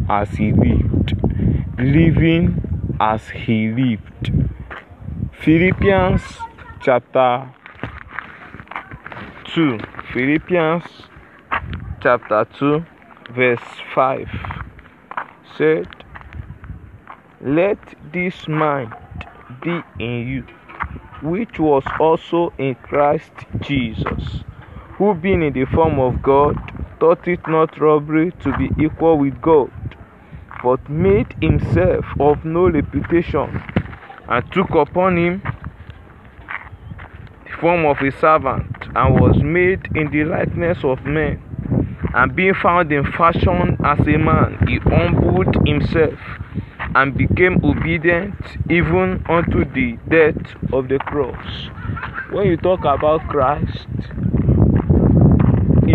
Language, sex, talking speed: English, male, 100 wpm